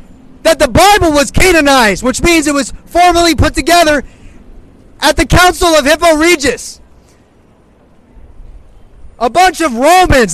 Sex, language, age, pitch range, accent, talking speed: male, English, 30-49, 275-340 Hz, American, 130 wpm